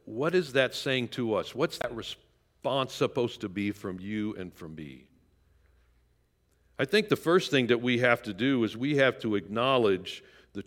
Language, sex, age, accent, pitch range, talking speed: English, male, 50-69, American, 100-140 Hz, 185 wpm